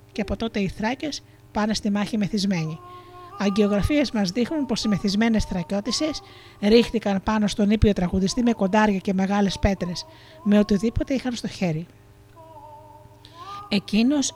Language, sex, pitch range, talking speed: Greek, female, 185-235 Hz, 135 wpm